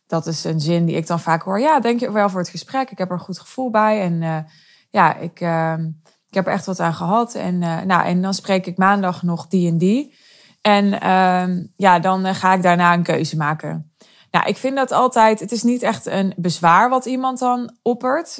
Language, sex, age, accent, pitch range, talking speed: Dutch, female, 20-39, Dutch, 170-205 Hz, 230 wpm